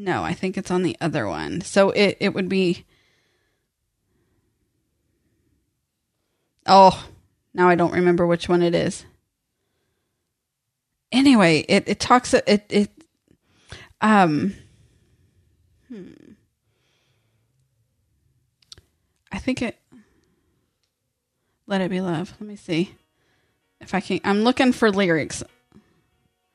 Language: English